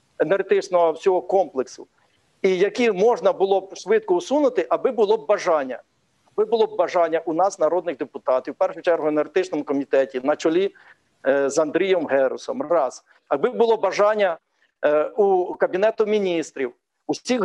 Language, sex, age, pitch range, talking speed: Ukrainian, male, 50-69, 170-225 Hz, 150 wpm